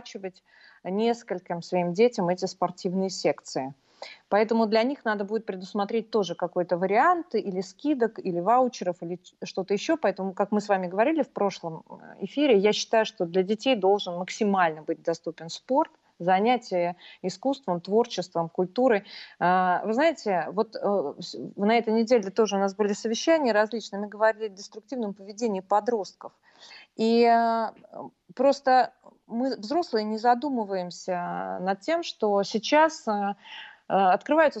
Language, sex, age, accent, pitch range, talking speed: Russian, female, 30-49, native, 185-245 Hz, 125 wpm